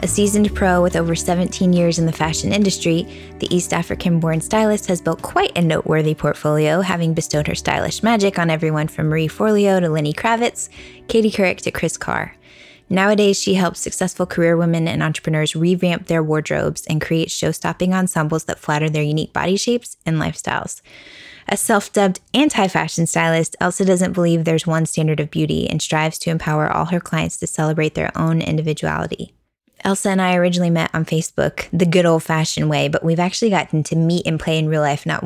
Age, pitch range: 20-39, 160-195 Hz